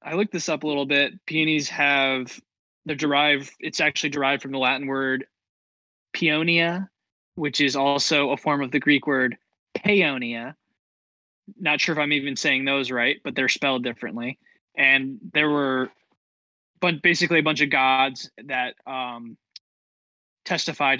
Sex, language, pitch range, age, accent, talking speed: male, English, 125-155 Hz, 20-39, American, 150 wpm